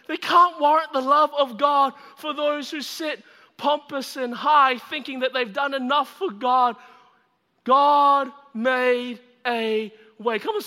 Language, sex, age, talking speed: English, male, 30-49, 150 wpm